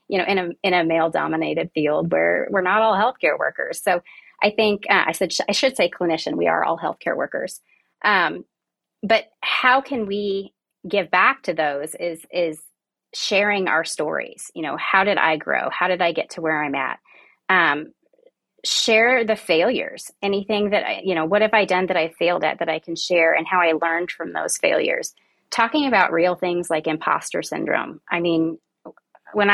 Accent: American